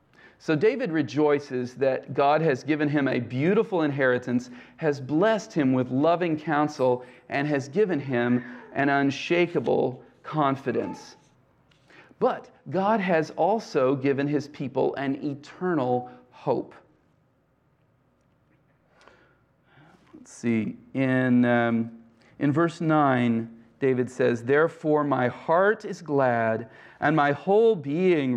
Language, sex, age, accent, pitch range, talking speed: English, male, 40-59, American, 130-165 Hz, 110 wpm